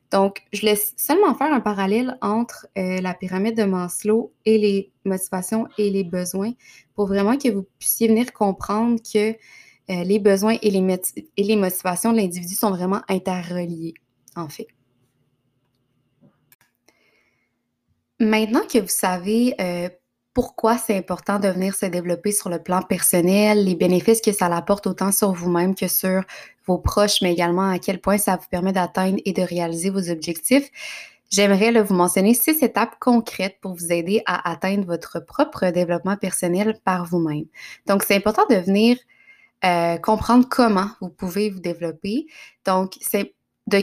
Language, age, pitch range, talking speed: French, 20-39, 180-220 Hz, 160 wpm